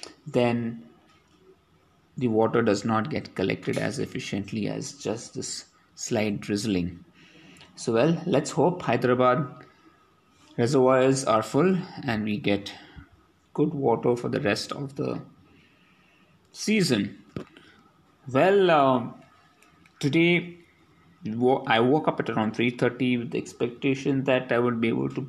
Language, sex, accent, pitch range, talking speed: English, male, Indian, 115-135 Hz, 120 wpm